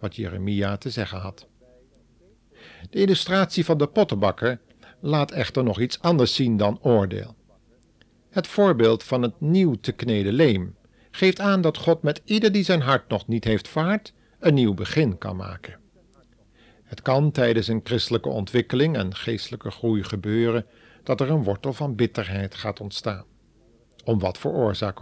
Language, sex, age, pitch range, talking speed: Dutch, male, 50-69, 105-130 Hz, 160 wpm